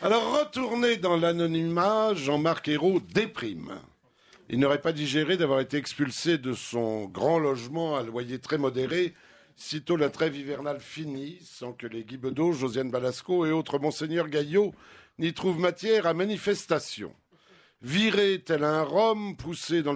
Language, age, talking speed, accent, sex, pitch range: French, 60-79, 145 wpm, French, male, 145-200 Hz